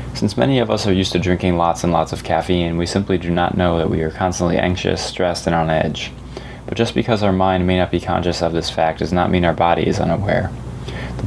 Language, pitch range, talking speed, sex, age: English, 85-105 Hz, 250 wpm, male, 20-39